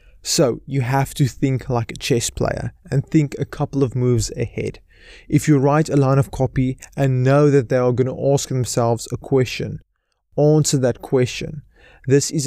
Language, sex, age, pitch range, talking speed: English, male, 20-39, 120-140 Hz, 190 wpm